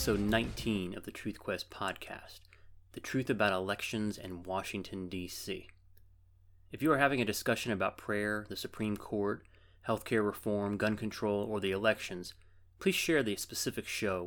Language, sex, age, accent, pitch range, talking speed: English, male, 30-49, American, 95-115 Hz, 160 wpm